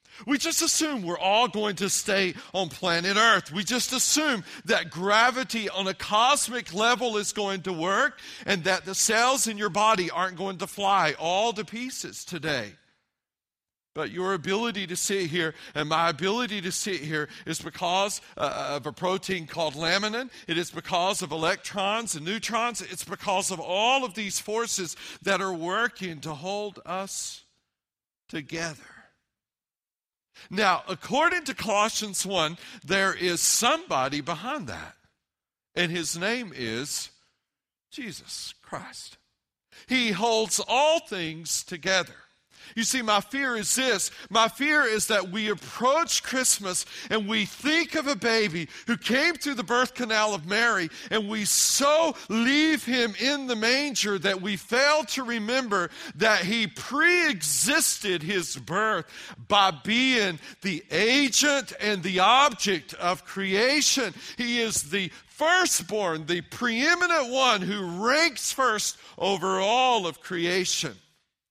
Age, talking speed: 40-59, 140 wpm